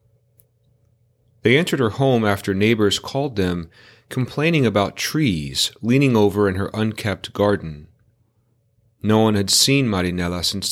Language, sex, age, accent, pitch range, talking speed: English, male, 40-59, American, 100-120 Hz, 130 wpm